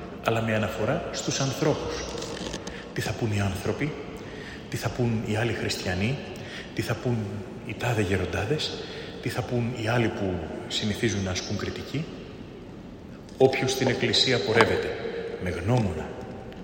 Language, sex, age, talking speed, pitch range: Greek, male, 30-49, 135 wpm, 95-140 Hz